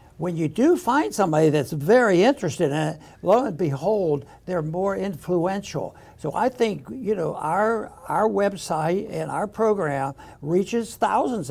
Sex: male